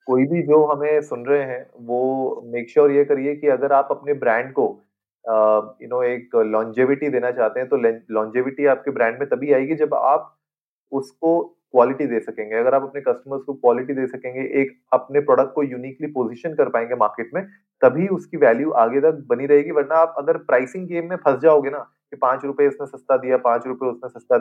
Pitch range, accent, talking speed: 130-175 Hz, native, 200 wpm